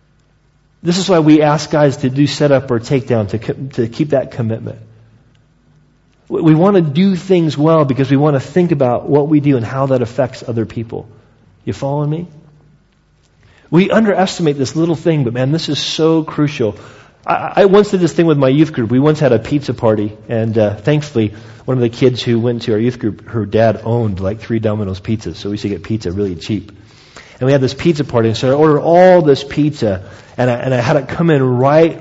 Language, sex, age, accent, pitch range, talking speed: English, male, 40-59, American, 115-155 Hz, 225 wpm